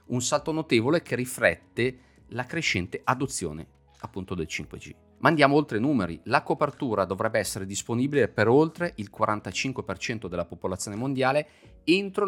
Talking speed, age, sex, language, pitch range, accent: 140 wpm, 30-49, male, Italian, 95-135 Hz, native